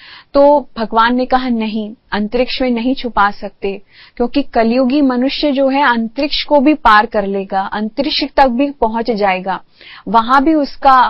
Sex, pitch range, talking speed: female, 215-275 Hz, 155 wpm